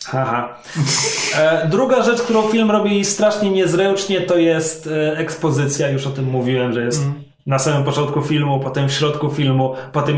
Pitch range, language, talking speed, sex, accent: 150-195 Hz, Polish, 145 wpm, male, native